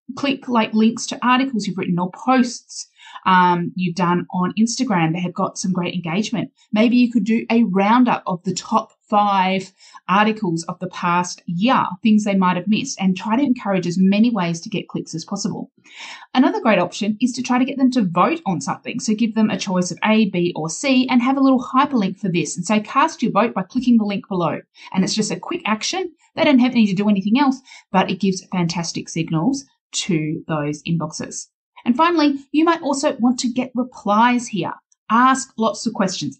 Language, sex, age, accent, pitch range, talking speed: English, female, 30-49, Australian, 180-245 Hz, 210 wpm